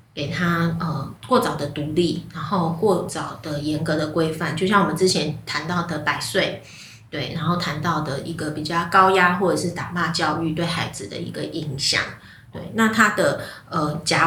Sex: female